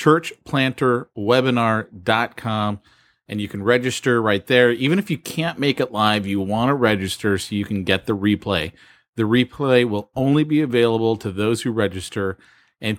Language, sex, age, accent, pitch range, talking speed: English, male, 30-49, American, 95-120 Hz, 160 wpm